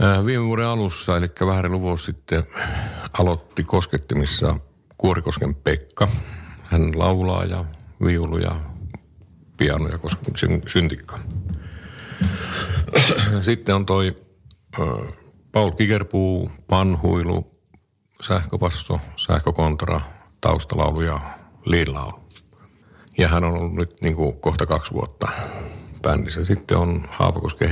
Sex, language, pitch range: male, Finnish, 85-100 Hz